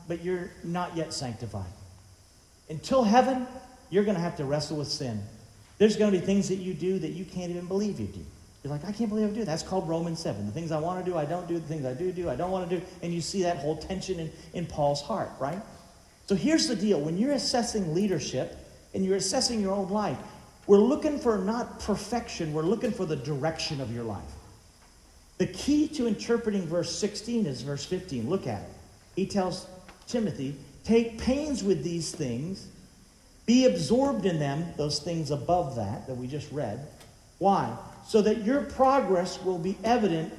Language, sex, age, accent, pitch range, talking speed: English, male, 50-69, American, 140-210 Hz, 205 wpm